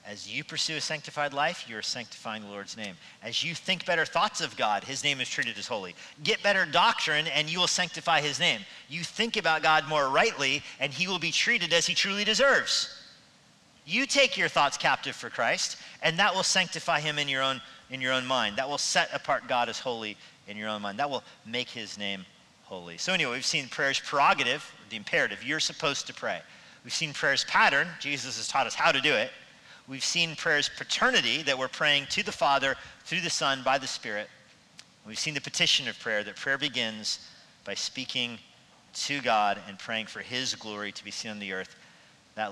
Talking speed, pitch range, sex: 205 wpm, 115-170 Hz, male